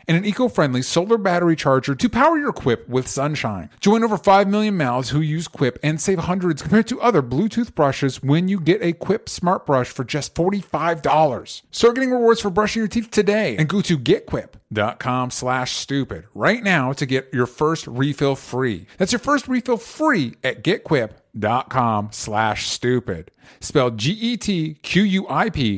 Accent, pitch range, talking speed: American, 125-180 Hz, 165 wpm